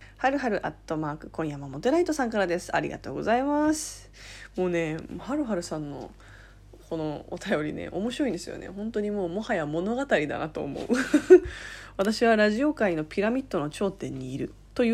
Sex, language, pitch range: female, Japanese, 165-255 Hz